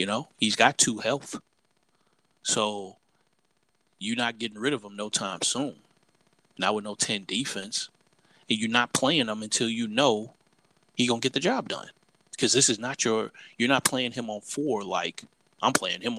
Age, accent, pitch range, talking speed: 30-49, American, 105-140 Hz, 190 wpm